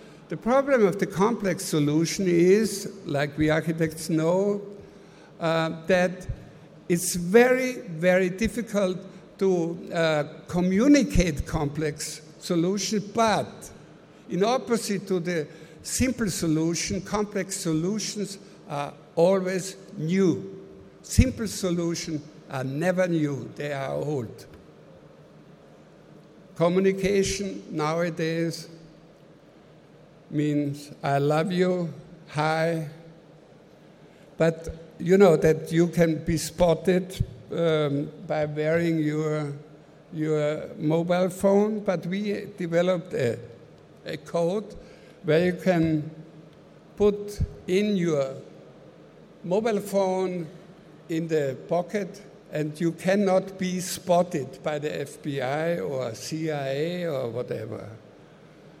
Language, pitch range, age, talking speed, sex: English, 155-190 Hz, 60-79, 95 wpm, male